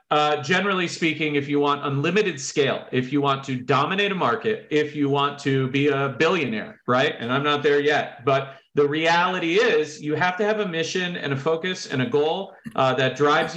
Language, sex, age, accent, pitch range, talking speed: English, male, 40-59, American, 135-170 Hz, 210 wpm